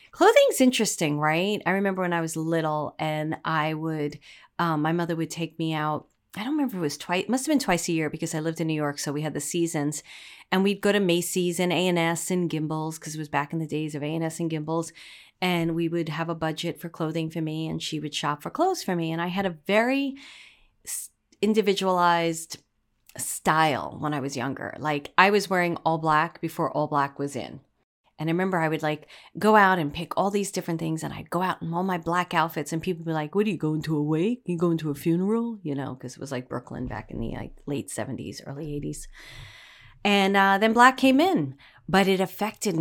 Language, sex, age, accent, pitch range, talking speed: English, female, 30-49, American, 155-185 Hz, 235 wpm